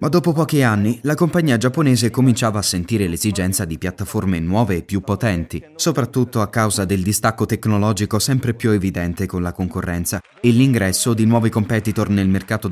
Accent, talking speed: native, 170 wpm